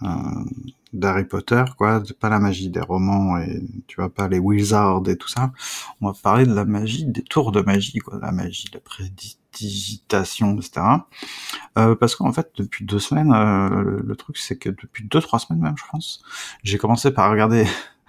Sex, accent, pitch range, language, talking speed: male, French, 100-120 Hz, French, 190 wpm